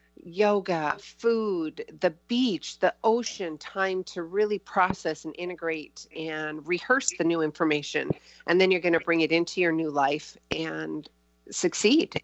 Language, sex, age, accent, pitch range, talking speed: English, female, 40-59, American, 155-195 Hz, 145 wpm